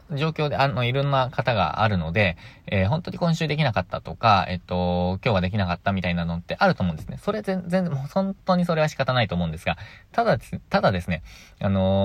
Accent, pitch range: native, 90-140 Hz